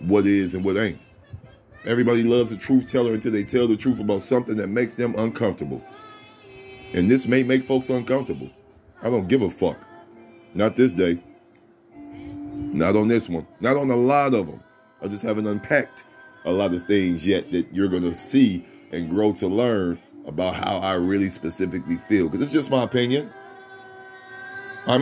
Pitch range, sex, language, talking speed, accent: 105-155 Hz, male, English, 180 wpm, American